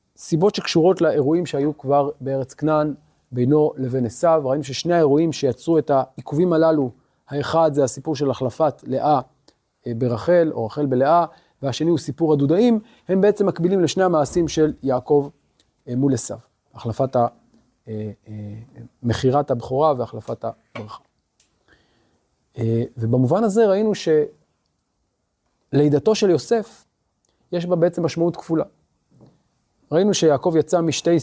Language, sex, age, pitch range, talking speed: Hebrew, male, 30-49, 130-175 Hz, 115 wpm